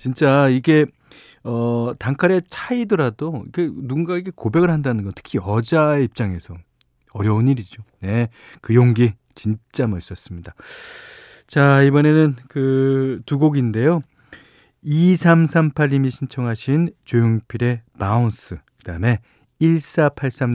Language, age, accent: Korean, 40-59, native